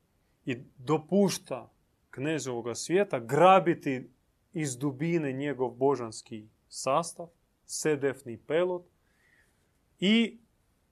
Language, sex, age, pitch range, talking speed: Croatian, male, 30-49, 120-155 Hz, 70 wpm